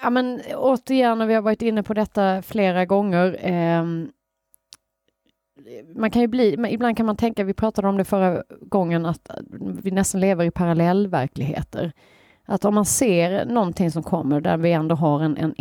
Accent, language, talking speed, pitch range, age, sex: native, Swedish, 175 wpm, 165-215 Hz, 30-49, female